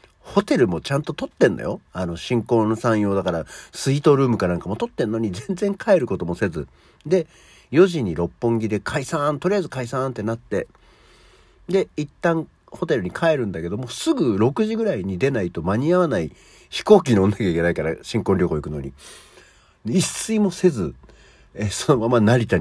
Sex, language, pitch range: male, Japanese, 85-130 Hz